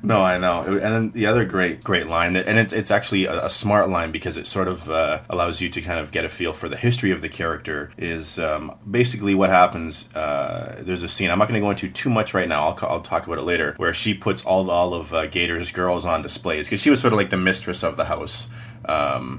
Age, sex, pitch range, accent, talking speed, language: 30-49, male, 85-105 Hz, American, 265 wpm, English